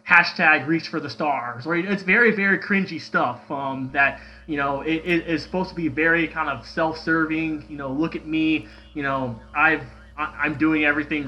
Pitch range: 140-175 Hz